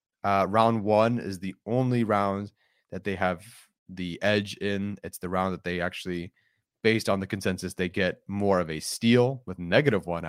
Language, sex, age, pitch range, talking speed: English, male, 30-49, 90-115 Hz, 185 wpm